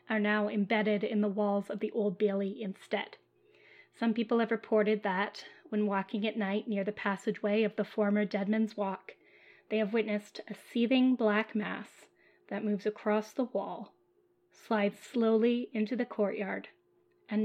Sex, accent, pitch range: female, American, 210-240 Hz